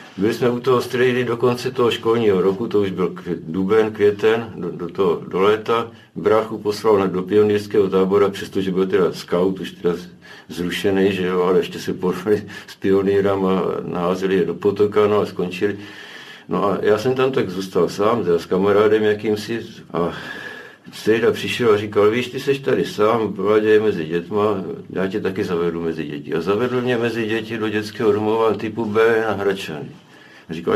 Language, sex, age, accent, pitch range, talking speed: Czech, male, 60-79, native, 95-115 Hz, 180 wpm